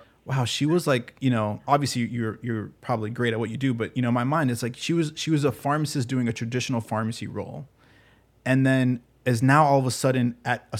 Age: 20-39